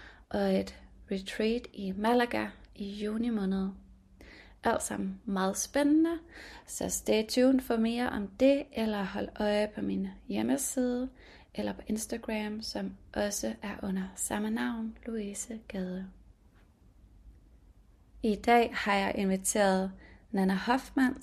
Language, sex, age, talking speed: English, female, 30-49, 120 wpm